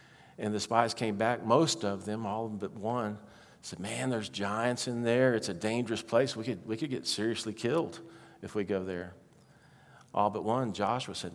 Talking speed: 195 wpm